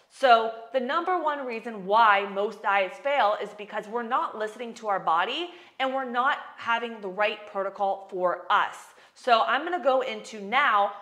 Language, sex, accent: English, female, American